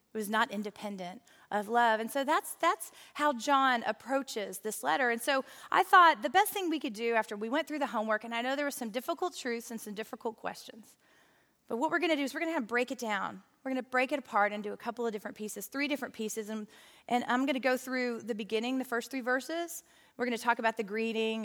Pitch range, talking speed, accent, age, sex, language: 210-265 Hz, 255 wpm, American, 30-49, female, English